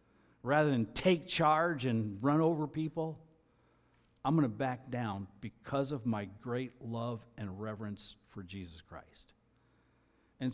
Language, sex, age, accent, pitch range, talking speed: English, male, 60-79, American, 115-140 Hz, 135 wpm